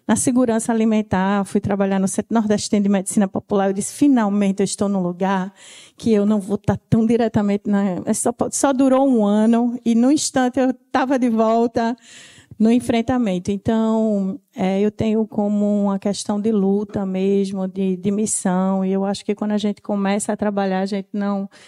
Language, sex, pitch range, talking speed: Portuguese, female, 195-225 Hz, 185 wpm